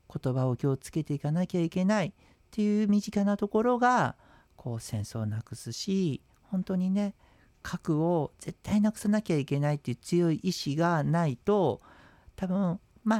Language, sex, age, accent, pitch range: Japanese, male, 50-69, native, 125-185 Hz